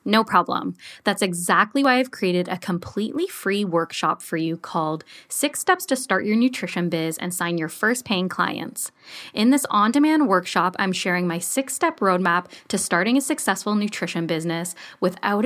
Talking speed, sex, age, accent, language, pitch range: 170 wpm, female, 10-29, American, English, 175-220 Hz